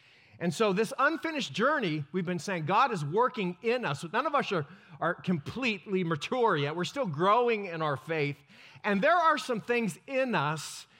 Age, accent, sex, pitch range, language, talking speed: 40-59, American, male, 150-225 Hz, Italian, 185 wpm